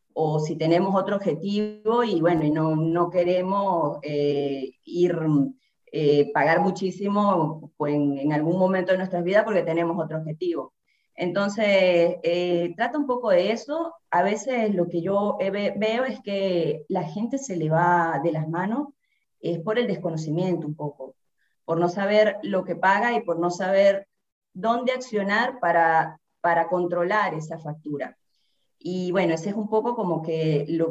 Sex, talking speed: female, 160 wpm